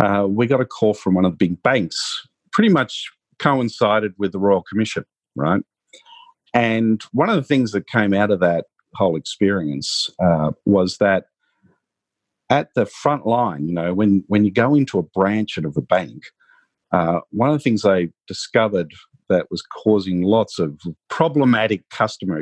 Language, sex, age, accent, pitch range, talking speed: English, male, 50-69, Australian, 100-130 Hz, 170 wpm